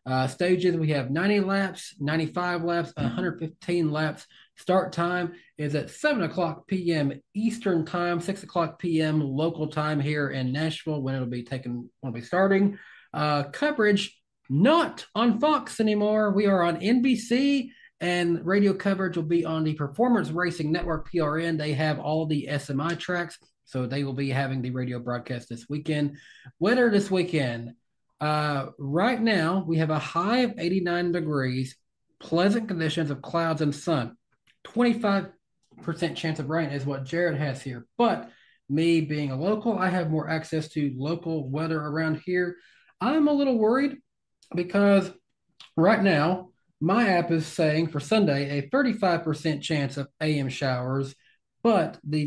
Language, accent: English, American